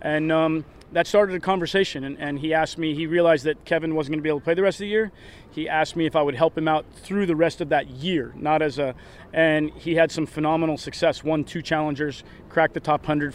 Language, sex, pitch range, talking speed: English, male, 140-160 Hz, 255 wpm